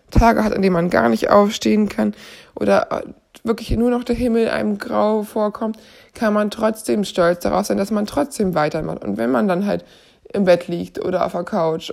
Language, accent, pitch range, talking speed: German, German, 195-235 Hz, 200 wpm